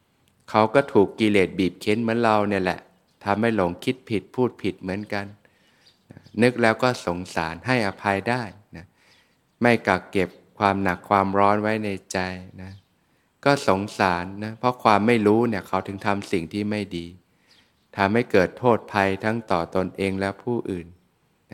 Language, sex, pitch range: Thai, male, 95-110 Hz